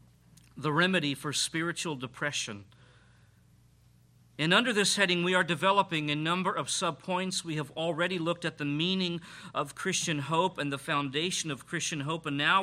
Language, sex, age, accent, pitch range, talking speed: English, male, 50-69, American, 145-210 Hz, 160 wpm